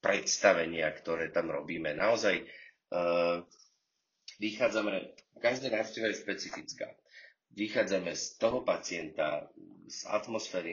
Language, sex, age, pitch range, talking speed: Slovak, male, 30-49, 85-115 Hz, 90 wpm